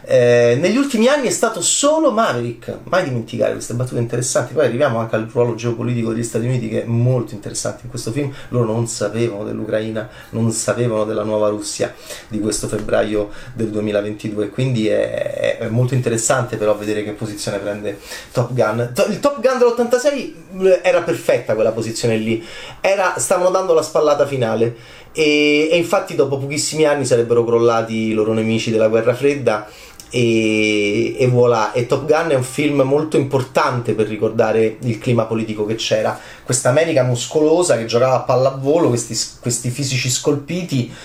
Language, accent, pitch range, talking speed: Italian, native, 115-155 Hz, 165 wpm